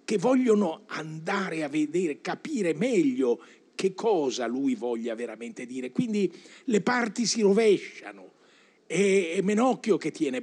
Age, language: 50-69, Italian